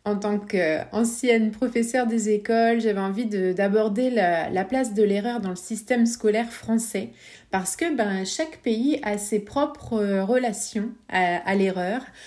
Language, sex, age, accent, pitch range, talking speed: French, female, 30-49, French, 210-255 Hz, 155 wpm